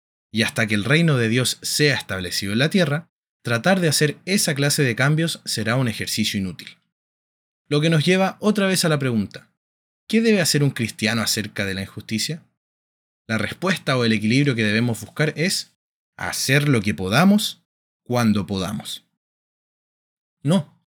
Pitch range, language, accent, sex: 105-155 Hz, Spanish, Argentinian, male